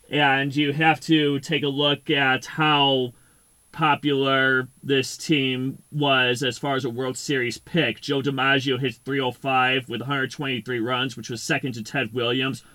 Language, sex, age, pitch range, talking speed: English, male, 30-49, 130-150 Hz, 165 wpm